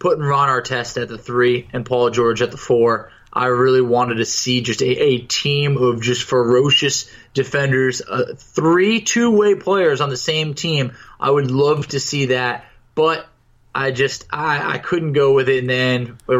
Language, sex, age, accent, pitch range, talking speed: English, male, 20-39, American, 125-185 Hz, 185 wpm